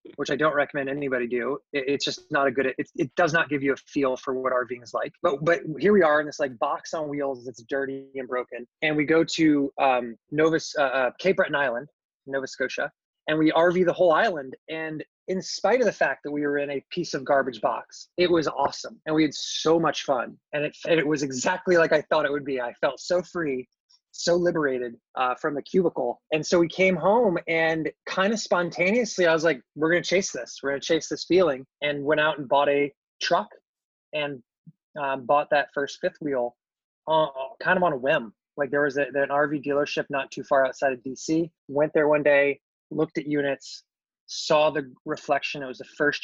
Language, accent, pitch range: English, American, 135-165 Hz